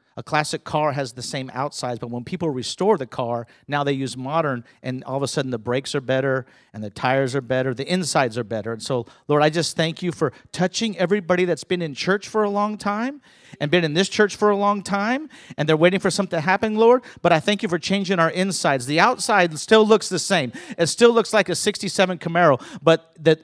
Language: English